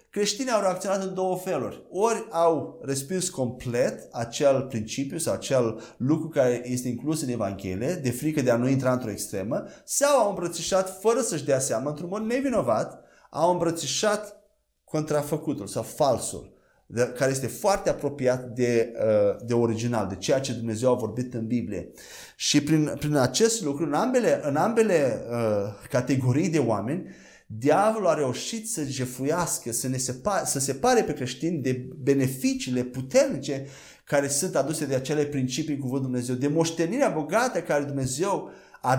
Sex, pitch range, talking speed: male, 130-185 Hz, 150 wpm